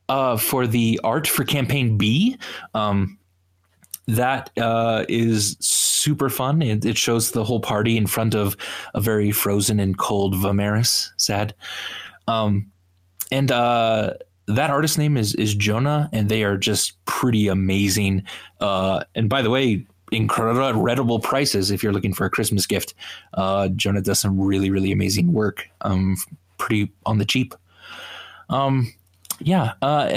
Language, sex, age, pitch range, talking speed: English, male, 20-39, 100-135 Hz, 145 wpm